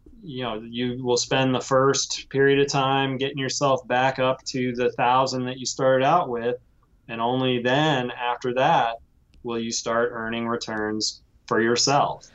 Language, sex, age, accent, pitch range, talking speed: English, male, 20-39, American, 115-145 Hz, 165 wpm